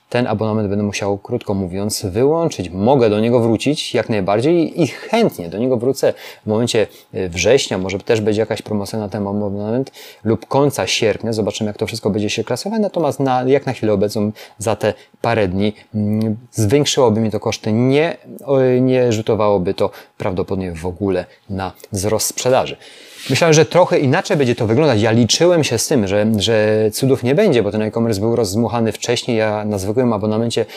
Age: 30-49